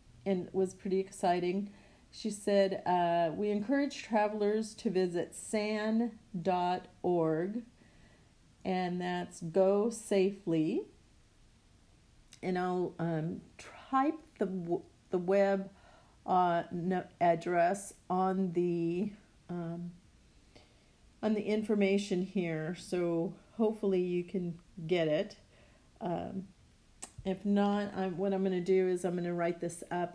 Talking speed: 115 wpm